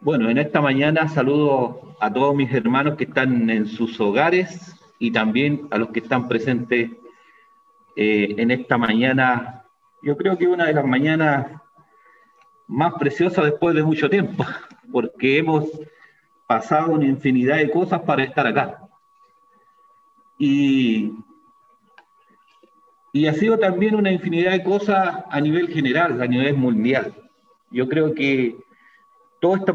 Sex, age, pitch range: male, 40-59, 145-225 Hz